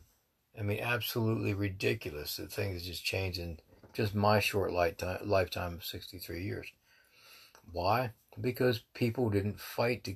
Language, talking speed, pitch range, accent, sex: English, 135 wpm, 95-115 Hz, American, male